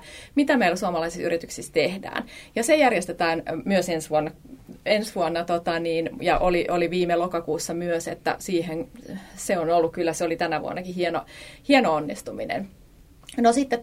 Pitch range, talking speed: 160-185 Hz, 155 wpm